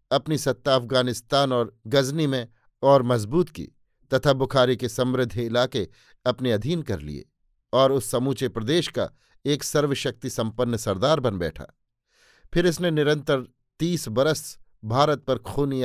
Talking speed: 140 wpm